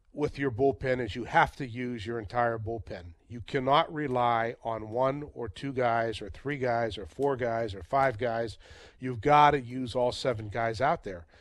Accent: American